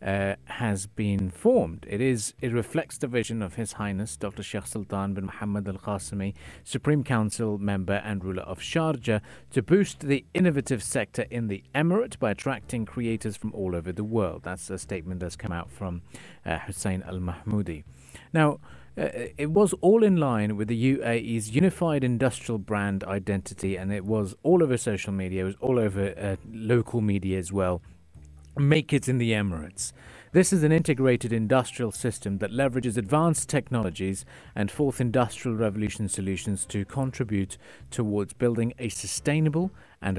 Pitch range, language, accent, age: 95-130 Hz, English, British, 40-59